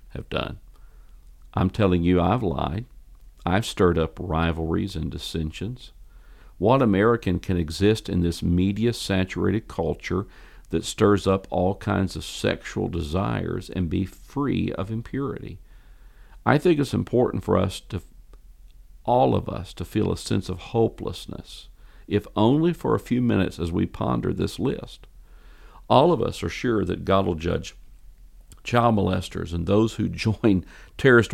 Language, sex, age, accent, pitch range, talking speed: English, male, 50-69, American, 85-115 Hz, 145 wpm